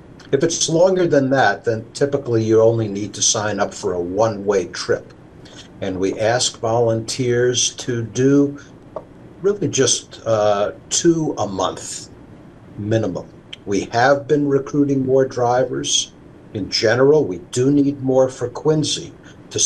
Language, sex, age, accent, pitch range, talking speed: English, male, 60-79, American, 110-135 Hz, 135 wpm